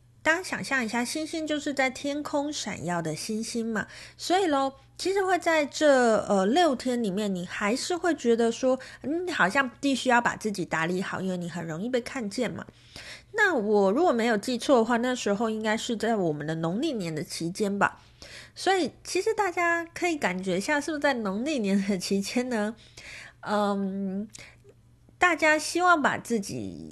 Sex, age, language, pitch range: female, 30-49, Chinese, 195-290 Hz